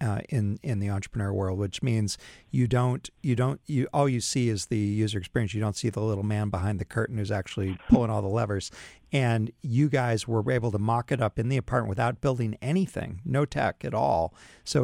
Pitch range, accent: 110-135 Hz, American